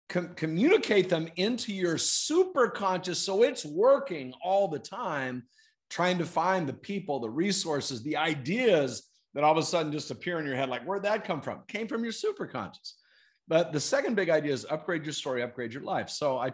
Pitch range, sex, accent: 120-175 Hz, male, American